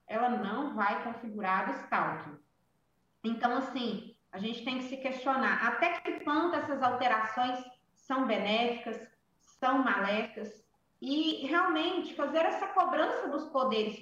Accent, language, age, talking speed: Brazilian, Portuguese, 20-39, 130 wpm